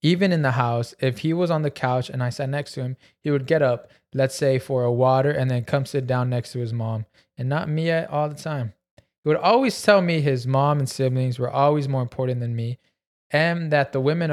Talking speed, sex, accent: 250 wpm, male, American